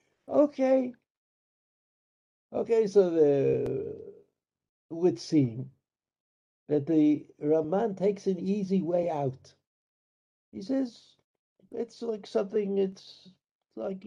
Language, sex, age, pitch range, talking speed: English, male, 60-79, 140-210 Hz, 90 wpm